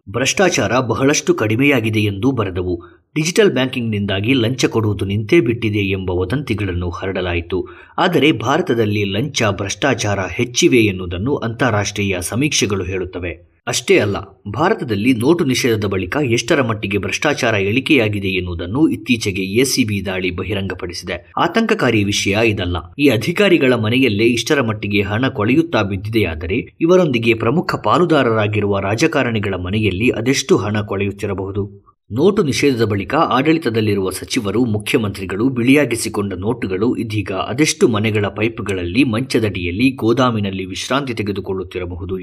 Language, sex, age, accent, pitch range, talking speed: Kannada, male, 20-39, native, 95-125 Hz, 105 wpm